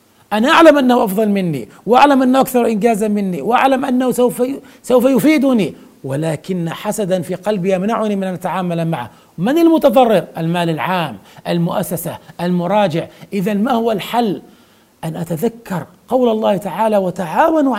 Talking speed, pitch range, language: 130 wpm, 200-250 Hz, English